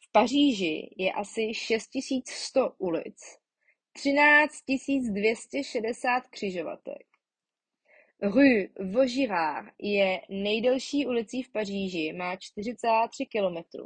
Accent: native